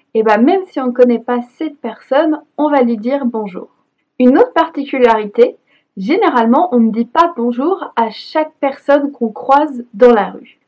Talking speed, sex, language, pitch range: 210 wpm, female, French, 235-295 Hz